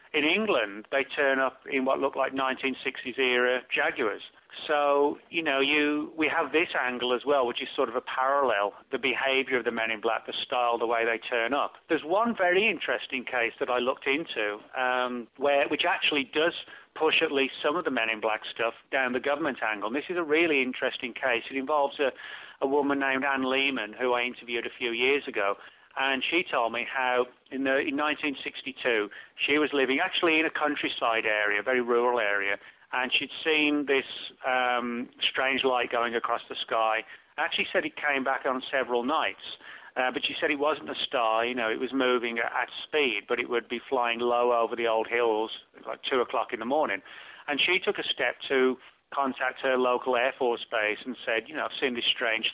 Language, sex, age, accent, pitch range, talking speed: English, male, 40-59, British, 120-145 Hz, 210 wpm